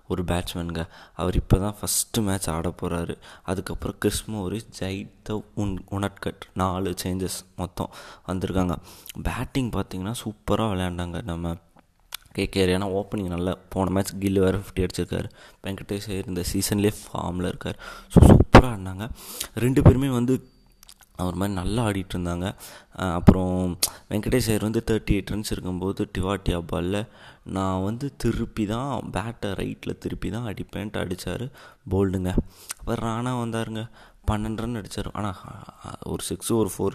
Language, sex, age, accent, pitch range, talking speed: Tamil, male, 20-39, native, 90-105 Hz, 125 wpm